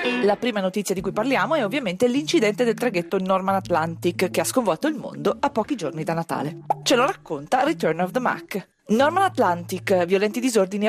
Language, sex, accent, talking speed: Italian, female, native, 190 wpm